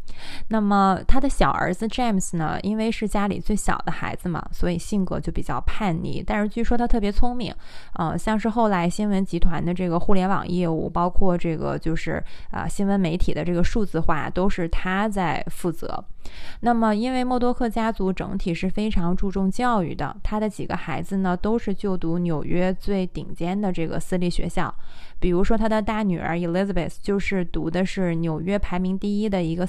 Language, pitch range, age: Chinese, 170-205 Hz, 20-39